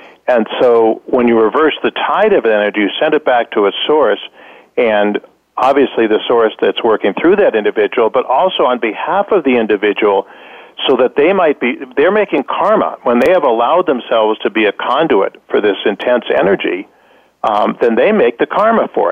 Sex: male